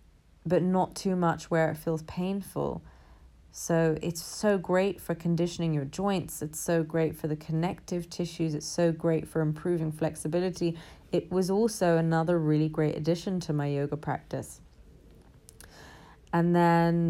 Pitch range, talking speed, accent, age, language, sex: 160-215 Hz, 145 wpm, British, 30-49, English, female